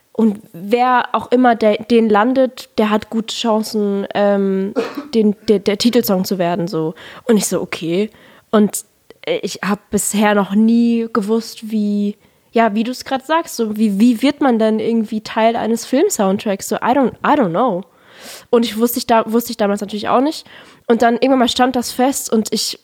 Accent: German